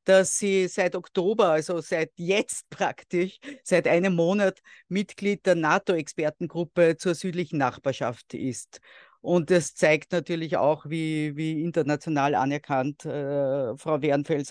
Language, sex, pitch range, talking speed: German, female, 160-190 Hz, 125 wpm